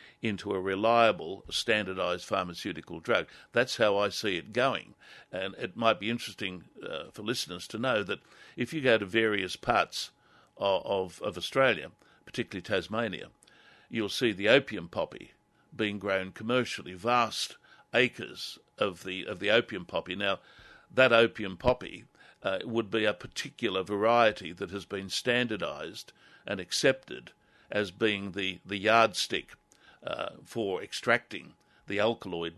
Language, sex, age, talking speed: English, male, 60-79, 140 wpm